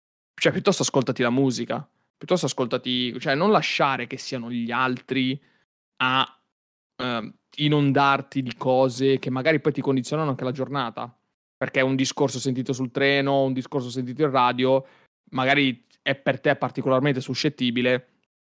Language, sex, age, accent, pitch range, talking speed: Italian, male, 20-39, native, 125-135 Hz, 145 wpm